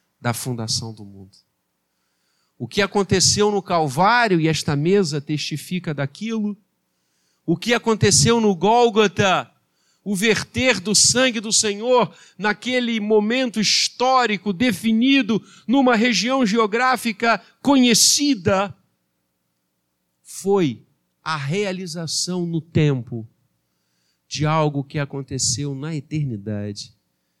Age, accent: 50-69, Brazilian